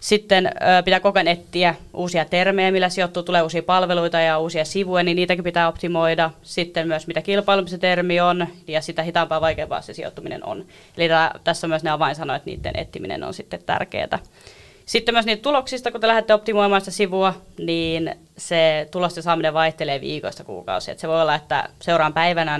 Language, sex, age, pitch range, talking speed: Finnish, female, 20-39, 160-185 Hz, 185 wpm